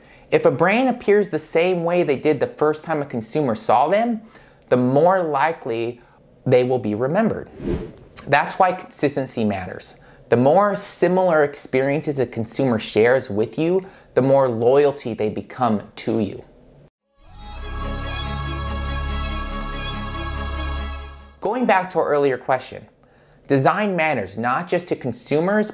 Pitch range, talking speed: 120-175 Hz, 130 wpm